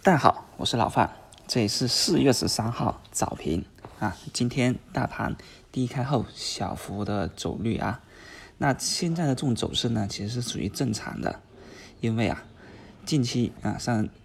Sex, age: male, 20-39